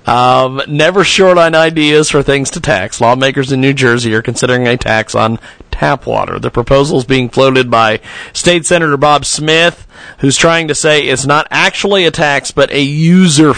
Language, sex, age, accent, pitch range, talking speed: English, male, 40-59, American, 135-170 Hz, 185 wpm